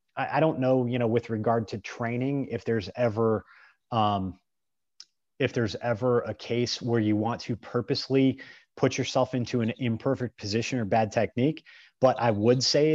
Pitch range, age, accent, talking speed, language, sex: 110-125 Hz, 30-49, American, 165 wpm, English, male